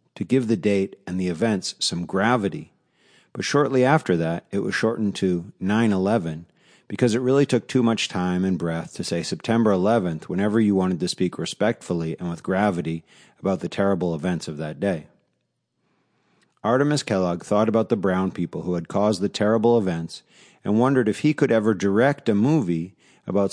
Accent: American